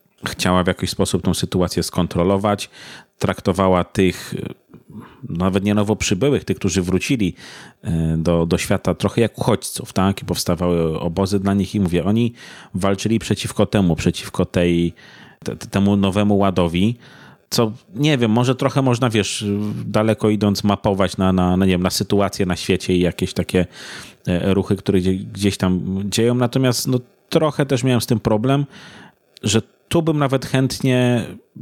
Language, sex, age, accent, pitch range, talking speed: Polish, male, 30-49, native, 90-115 Hz, 150 wpm